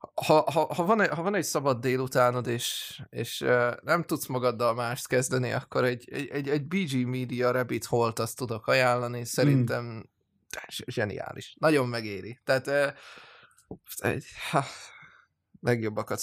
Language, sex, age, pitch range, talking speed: Hungarian, male, 20-39, 115-140 Hz, 135 wpm